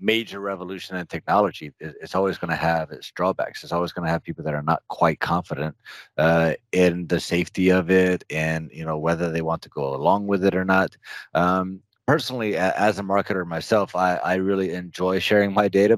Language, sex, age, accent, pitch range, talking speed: English, male, 30-49, American, 85-100 Hz, 200 wpm